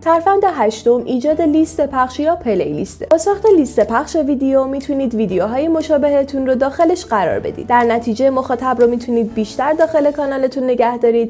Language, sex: Persian, female